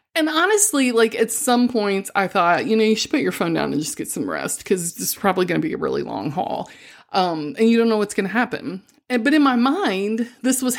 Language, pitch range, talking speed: English, 180-235 Hz, 265 wpm